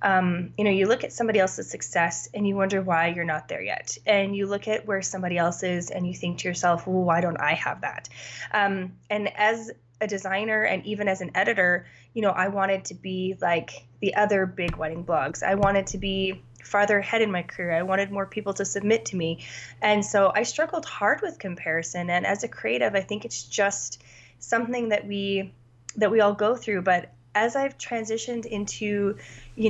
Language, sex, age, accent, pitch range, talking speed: English, female, 20-39, American, 175-215 Hz, 210 wpm